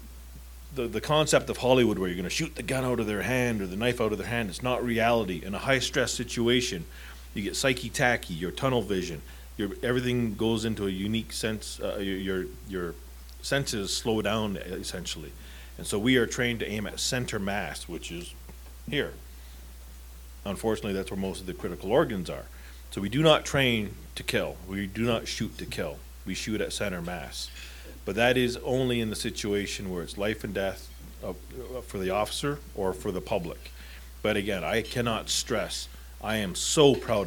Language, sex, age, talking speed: English, male, 40-59, 190 wpm